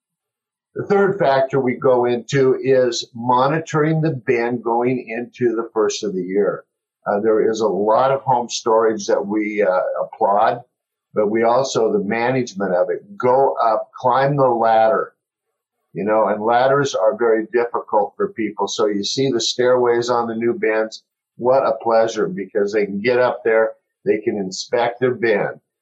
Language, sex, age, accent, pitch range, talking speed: English, male, 50-69, American, 120-150 Hz, 170 wpm